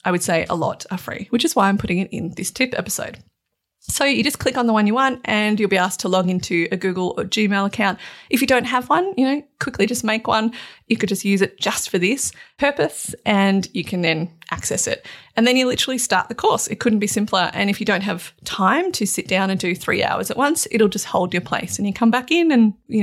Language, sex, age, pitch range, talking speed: English, female, 30-49, 185-245 Hz, 265 wpm